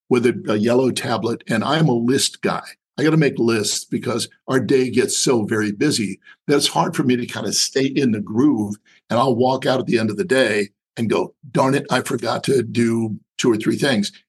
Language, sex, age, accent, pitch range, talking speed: English, male, 50-69, American, 120-180 Hz, 235 wpm